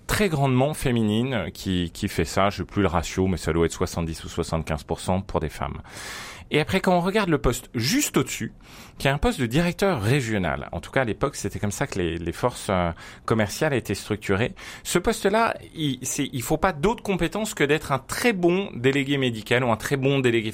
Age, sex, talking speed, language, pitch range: 30-49, male, 215 wpm, French, 100-145 Hz